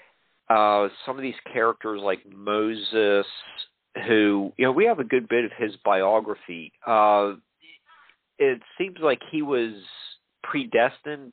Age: 50-69